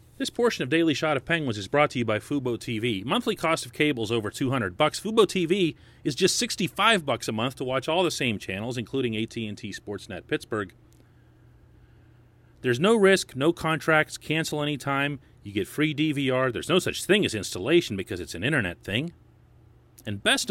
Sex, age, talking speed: male, 40-59, 185 wpm